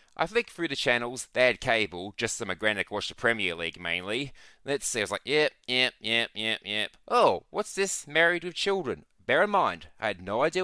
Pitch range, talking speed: 115-170 Hz, 225 wpm